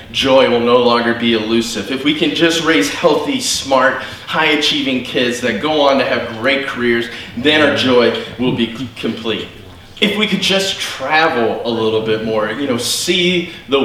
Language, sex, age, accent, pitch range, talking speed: English, male, 20-39, American, 115-180 Hz, 180 wpm